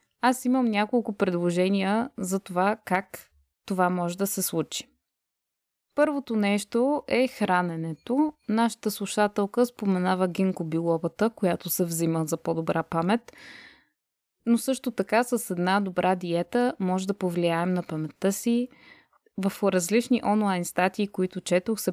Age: 20-39